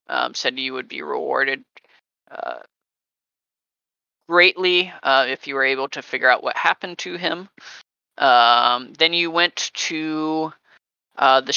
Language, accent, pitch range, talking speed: English, American, 140-175 Hz, 140 wpm